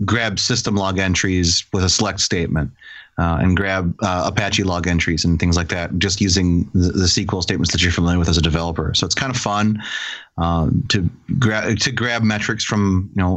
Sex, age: male, 30-49